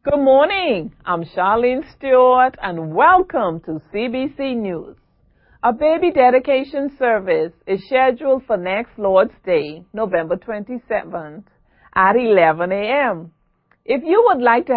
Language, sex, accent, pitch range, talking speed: English, female, American, 195-265 Hz, 120 wpm